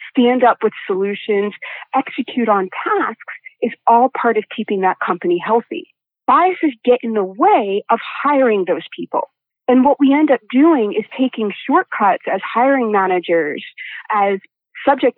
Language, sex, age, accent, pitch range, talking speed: English, female, 40-59, American, 205-275 Hz, 150 wpm